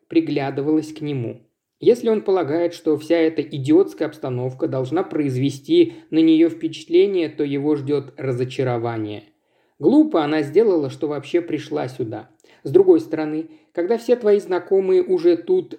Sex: male